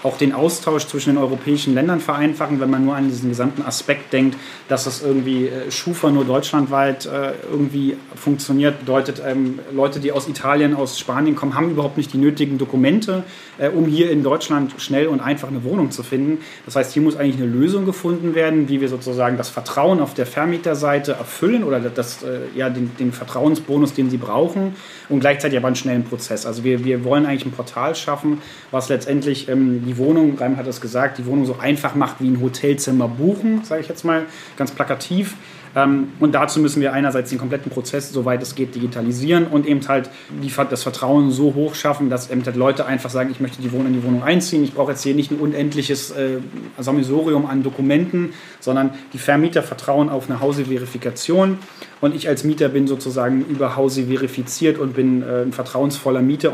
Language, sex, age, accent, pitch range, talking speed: German, male, 30-49, German, 130-145 Hz, 195 wpm